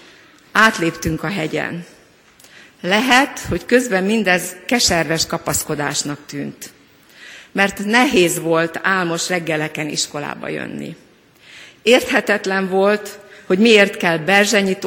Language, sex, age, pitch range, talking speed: Hungarian, female, 50-69, 165-210 Hz, 95 wpm